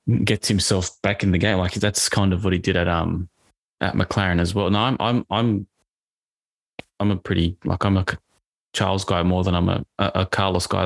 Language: English